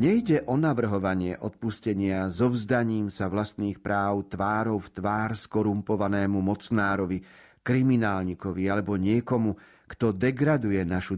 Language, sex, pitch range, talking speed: Slovak, male, 100-130 Hz, 115 wpm